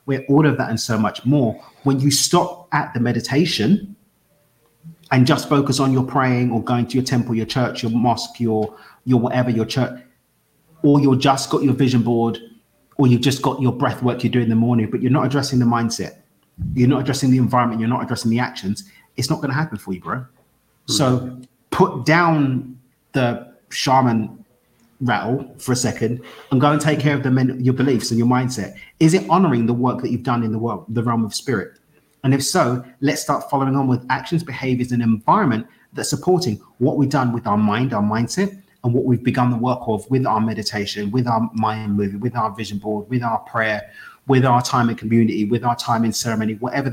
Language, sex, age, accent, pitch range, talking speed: English, male, 30-49, British, 115-135 Hz, 215 wpm